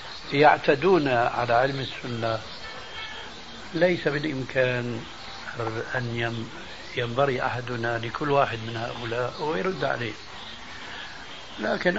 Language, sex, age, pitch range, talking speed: Arabic, male, 60-79, 120-140 Hz, 80 wpm